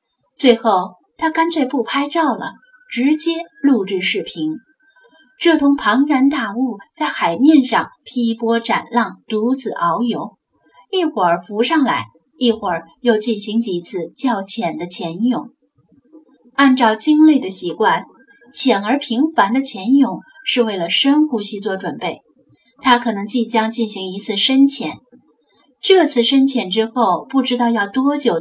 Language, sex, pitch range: Chinese, female, 220-275 Hz